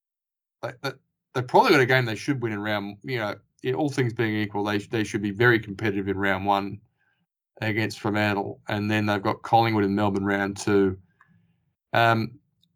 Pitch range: 100-125 Hz